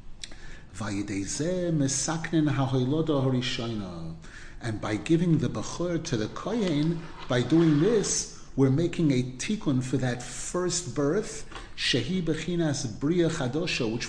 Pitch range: 130-170 Hz